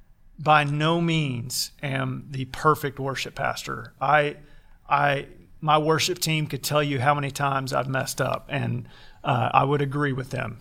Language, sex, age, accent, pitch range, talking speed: English, male, 40-59, American, 130-150 Hz, 165 wpm